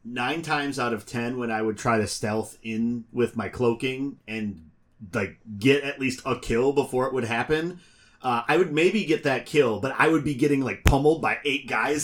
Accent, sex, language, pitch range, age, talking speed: American, male, English, 115-145 Hz, 30-49, 215 wpm